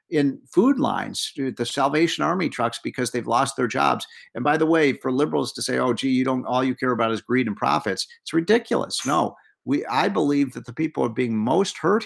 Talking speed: 225 wpm